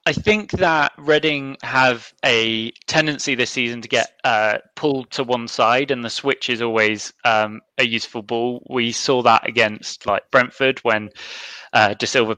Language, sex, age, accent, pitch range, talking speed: English, male, 20-39, British, 110-130 Hz, 170 wpm